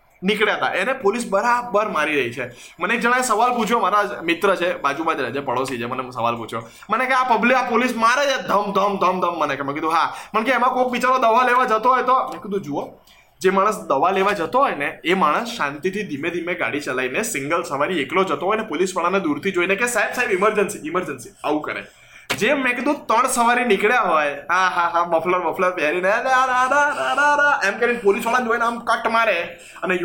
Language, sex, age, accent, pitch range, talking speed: Gujarati, male, 20-39, native, 175-230 Hz, 145 wpm